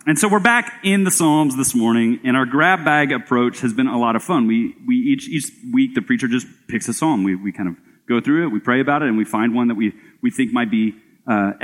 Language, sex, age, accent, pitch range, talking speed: English, male, 30-49, American, 105-155 Hz, 275 wpm